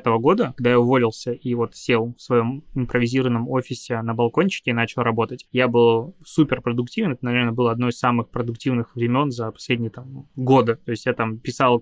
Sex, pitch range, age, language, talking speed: male, 120-130 Hz, 20-39, Russian, 190 wpm